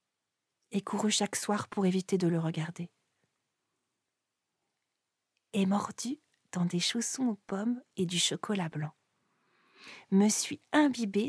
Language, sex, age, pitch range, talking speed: French, female, 40-59, 175-225 Hz, 120 wpm